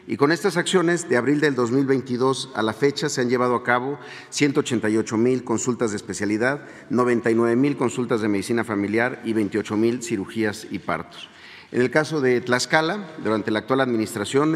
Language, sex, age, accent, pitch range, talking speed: Spanish, male, 50-69, Mexican, 110-140 Hz, 165 wpm